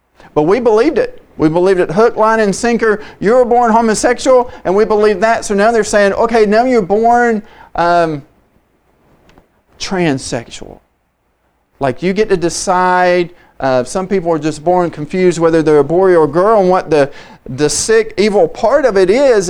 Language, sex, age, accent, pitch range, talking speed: English, male, 40-59, American, 170-220 Hz, 180 wpm